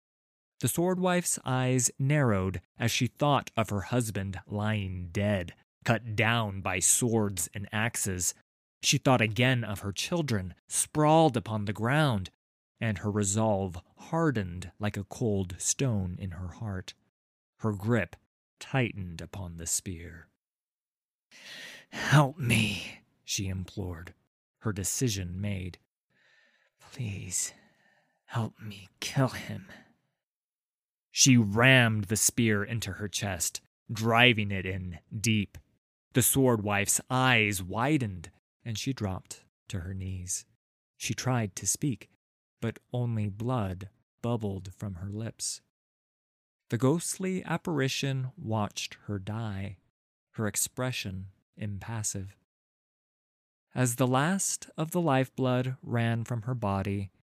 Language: English